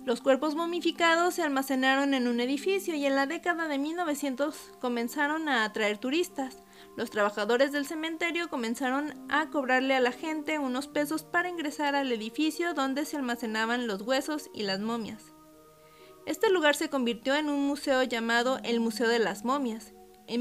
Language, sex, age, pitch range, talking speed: Spanish, female, 30-49, 230-300 Hz, 165 wpm